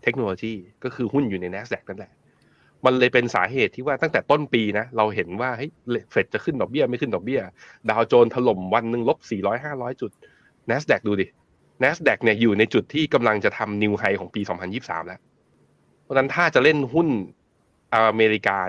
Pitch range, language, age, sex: 105-135 Hz, Thai, 20-39, male